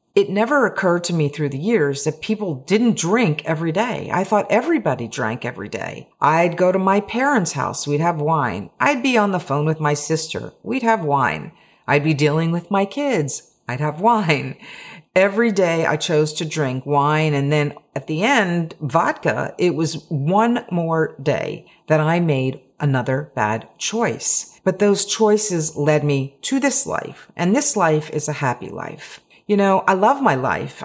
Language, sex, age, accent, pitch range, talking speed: English, female, 50-69, American, 145-195 Hz, 185 wpm